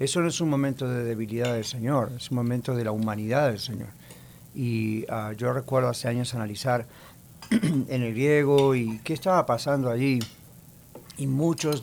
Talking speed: 165 wpm